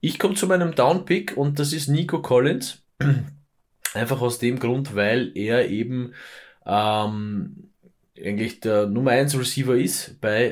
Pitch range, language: 105-135 Hz, German